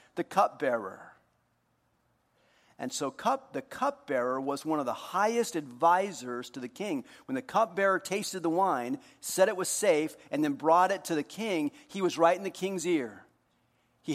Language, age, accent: English, 50-69, American